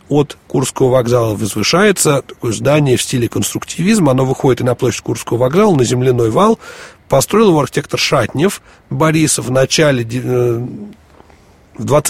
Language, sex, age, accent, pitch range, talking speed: Russian, male, 40-59, native, 120-160 Hz, 135 wpm